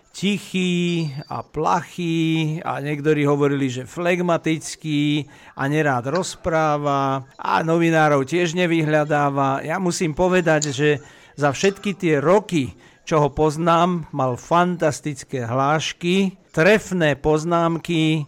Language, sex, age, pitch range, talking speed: Slovak, male, 50-69, 145-175 Hz, 100 wpm